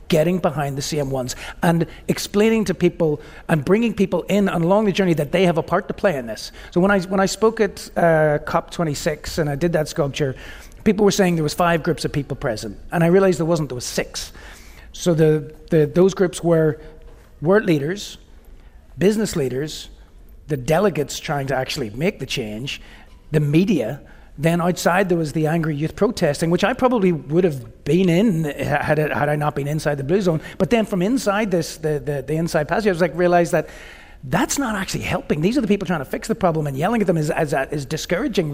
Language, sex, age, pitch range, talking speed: English, male, 40-59, 140-185 Hz, 215 wpm